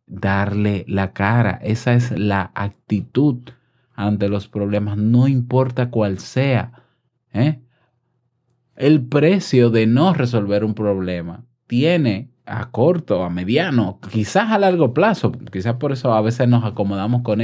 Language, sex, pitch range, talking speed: Spanish, male, 110-135 Hz, 130 wpm